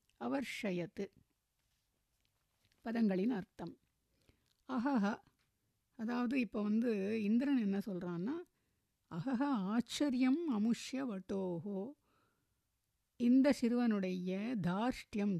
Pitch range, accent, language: 190-255 Hz, native, Tamil